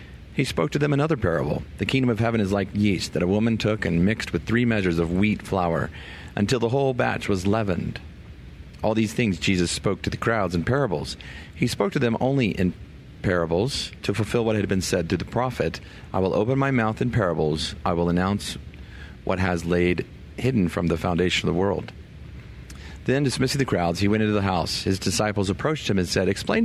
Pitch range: 85-110 Hz